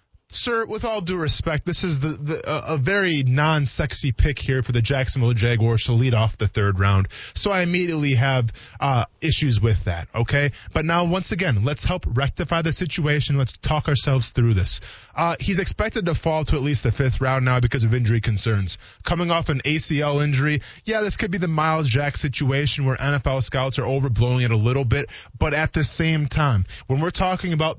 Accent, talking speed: American, 200 wpm